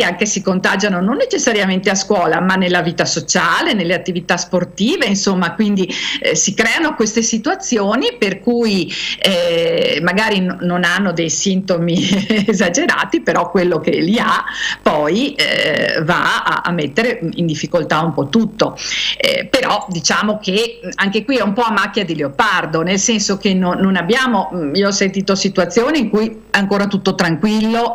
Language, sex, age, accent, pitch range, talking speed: Italian, female, 50-69, native, 175-230 Hz, 165 wpm